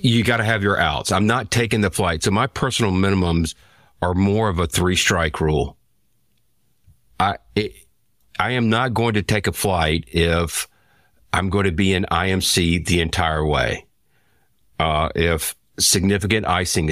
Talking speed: 165 wpm